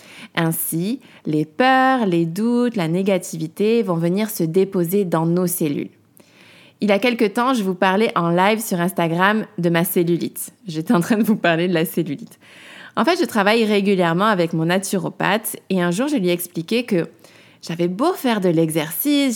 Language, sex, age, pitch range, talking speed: French, female, 20-39, 170-210 Hz, 185 wpm